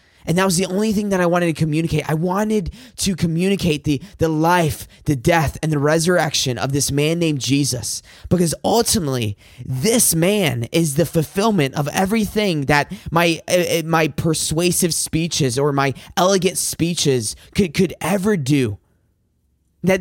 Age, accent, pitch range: 20-39, American, 140-185 Hz